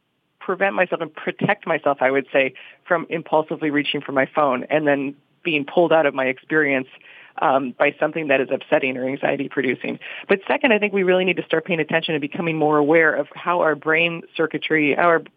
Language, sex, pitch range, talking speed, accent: English, female, 145-165 Hz, 200 wpm, American